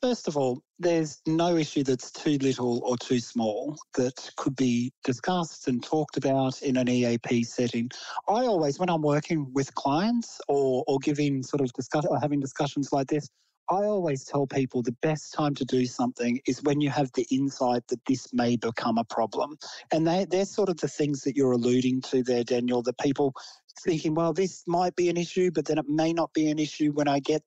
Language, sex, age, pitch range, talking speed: English, male, 40-59, 130-165 Hz, 210 wpm